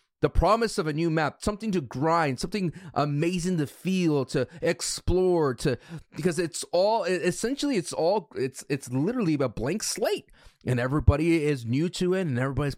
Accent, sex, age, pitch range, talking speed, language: American, male, 30-49, 135-180 Hz, 170 wpm, English